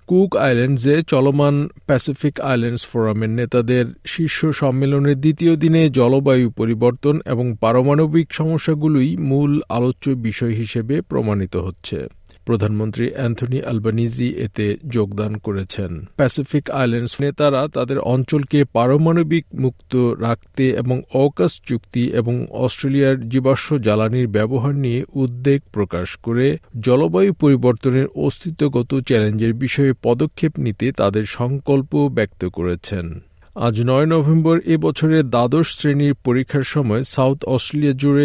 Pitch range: 110-140 Hz